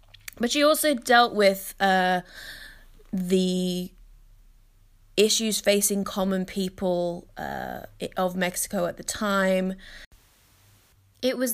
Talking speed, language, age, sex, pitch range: 100 wpm, English, 20-39, female, 170-210 Hz